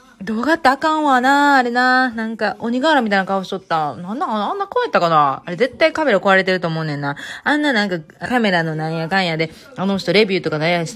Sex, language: female, Japanese